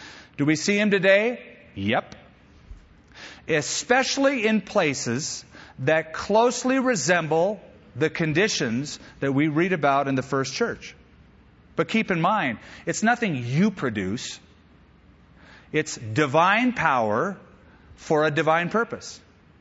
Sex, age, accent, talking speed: male, 40-59, American, 115 wpm